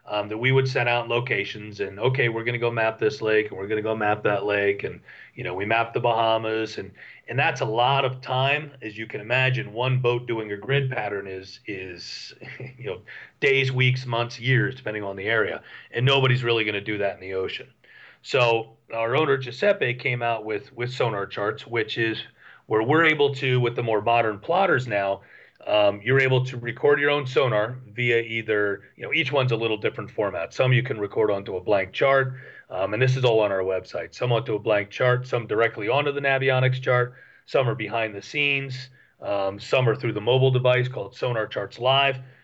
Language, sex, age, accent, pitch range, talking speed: English, male, 40-59, American, 110-130 Hz, 215 wpm